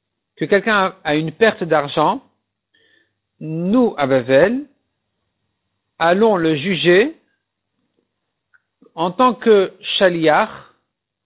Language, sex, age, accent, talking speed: French, male, 50-69, French, 85 wpm